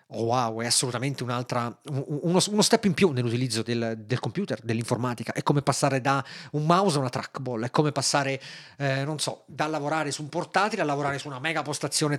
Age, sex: 30-49, male